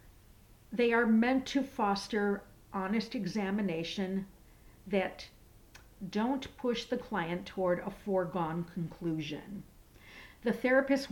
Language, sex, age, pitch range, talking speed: English, female, 50-69, 175-225 Hz, 95 wpm